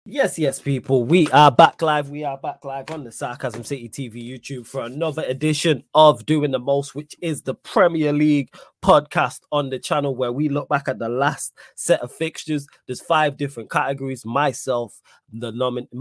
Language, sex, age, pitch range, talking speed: English, male, 20-39, 125-145 Hz, 185 wpm